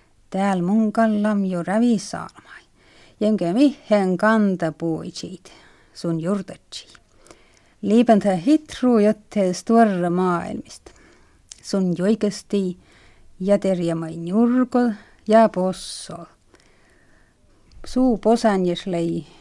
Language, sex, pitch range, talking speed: Finnish, female, 170-220 Hz, 75 wpm